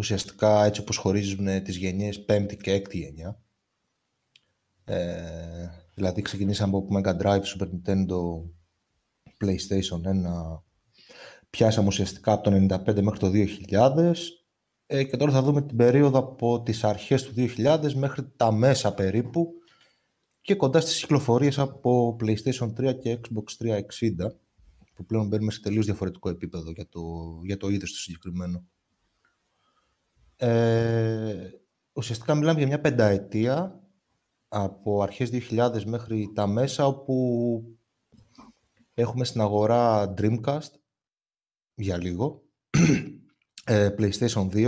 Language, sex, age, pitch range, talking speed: Greek, male, 20-39, 100-130 Hz, 120 wpm